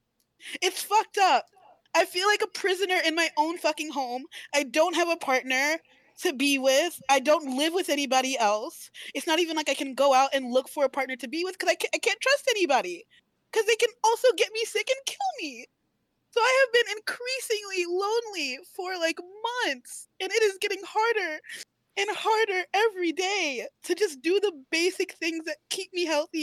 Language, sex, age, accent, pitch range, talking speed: English, female, 20-39, American, 280-380 Hz, 200 wpm